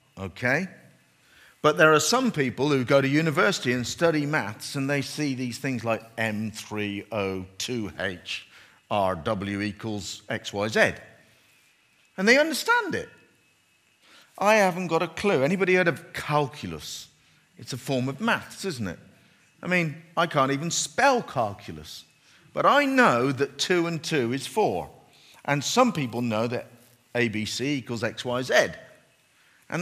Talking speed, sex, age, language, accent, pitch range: 135 wpm, male, 40-59, English, British, 115-170 Hz